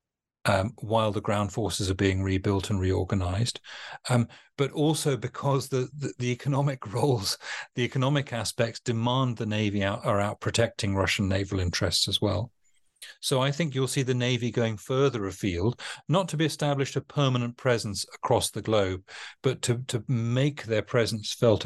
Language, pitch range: English, 105-135 Hz